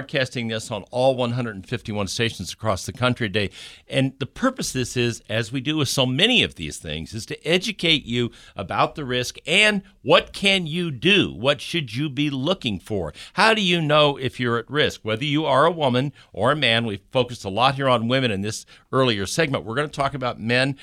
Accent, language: American, English